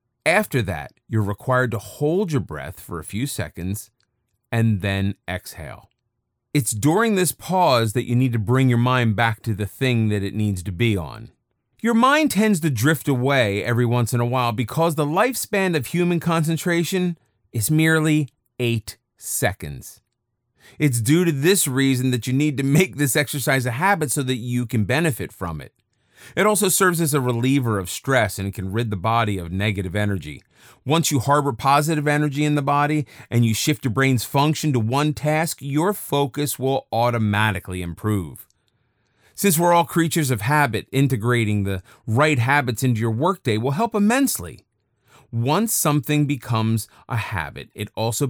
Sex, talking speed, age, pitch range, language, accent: male, 175 wpm, 30-49, 110-150 Hz, English, American